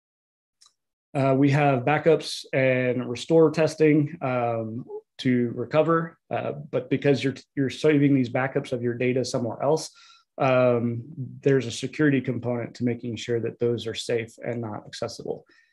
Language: English